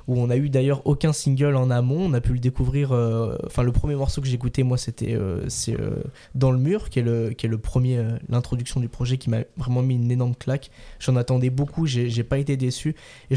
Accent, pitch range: French, 125-145 Hz